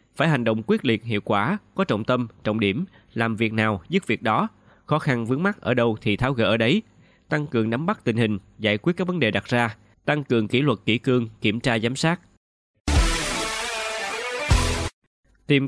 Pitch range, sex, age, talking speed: 105-135 Hz, male, 20-39, 205 wpm